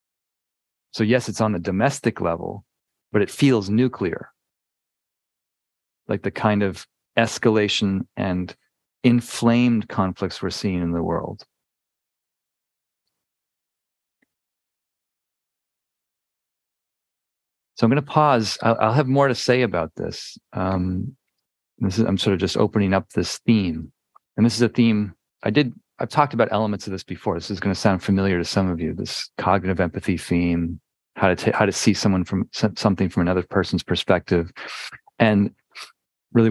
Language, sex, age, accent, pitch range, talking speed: English, male, 40-59, American, 90-115 Hz, 145 wpm